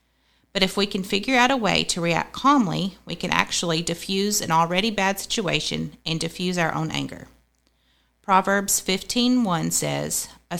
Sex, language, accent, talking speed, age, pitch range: female, English, American, 160 wpm, 30-49, 160-200 Hz